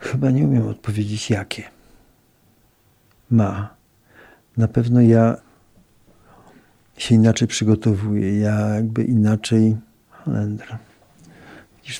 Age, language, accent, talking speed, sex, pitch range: 50-69, Polish, native, 85 wpm, male, 105-125 Hz